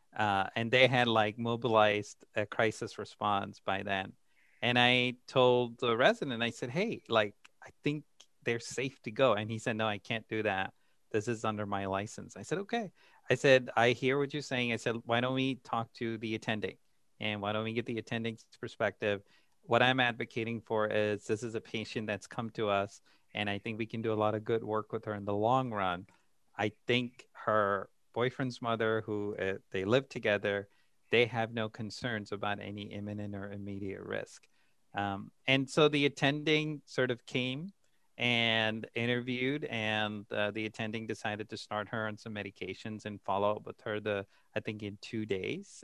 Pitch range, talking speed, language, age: 105-125 Hz, 195 wpm, English, 30-49